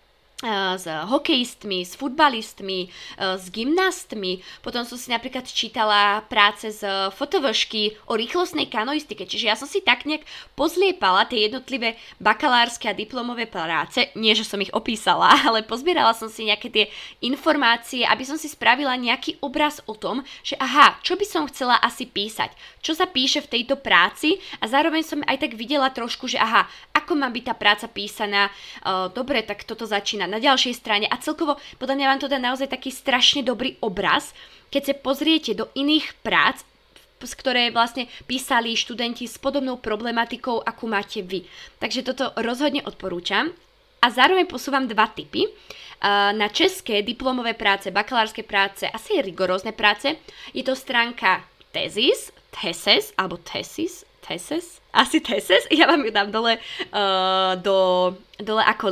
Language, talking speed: Slovak, 150 wpm